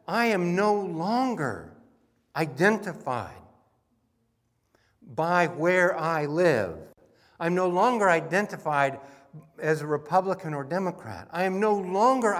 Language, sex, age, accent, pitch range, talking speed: English, male, 60-79, American, 115-185 Hz, 105 wpm